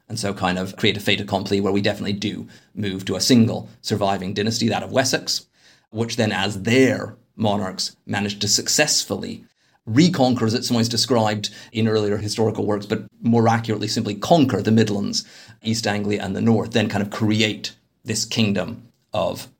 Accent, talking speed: British, 175 wpm